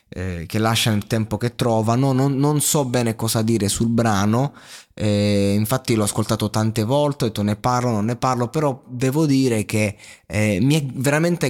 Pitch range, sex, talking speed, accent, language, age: 105-130 Hz, male, 190 wpm, native, Italian, 20-39